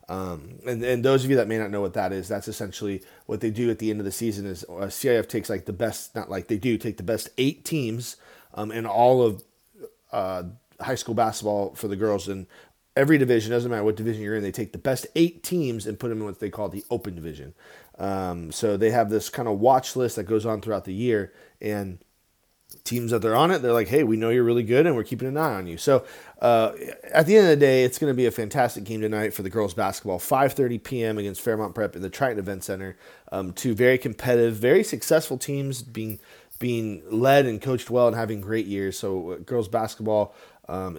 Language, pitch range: English, 105-125 Hz